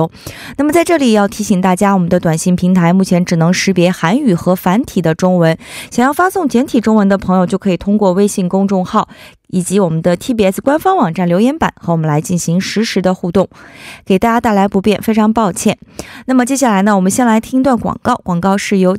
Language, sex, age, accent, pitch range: Korean, female, 20-39, Chinese, 185-260 Hz